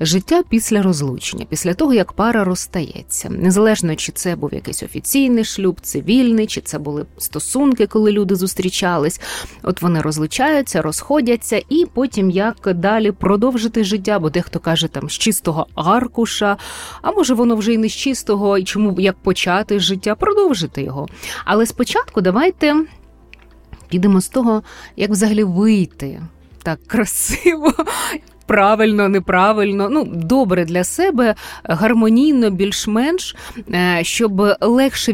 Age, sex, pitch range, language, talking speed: 30-49, female, 185-230 Hz, Ukrainian, 130 wpm